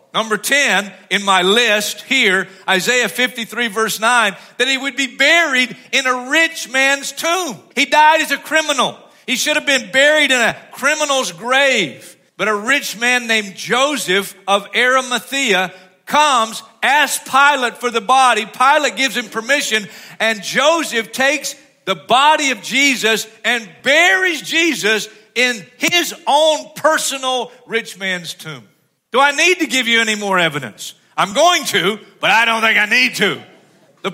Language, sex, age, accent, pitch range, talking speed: English, male, 50-69, American, 200-275 Hz, 155 wpm